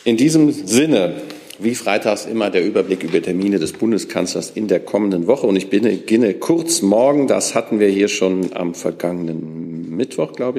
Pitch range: 90-110 Hz